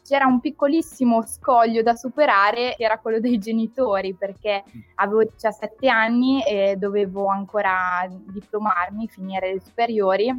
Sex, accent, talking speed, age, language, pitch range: female, native, 125 wpm, 20-39, Italian, 205-250 Hz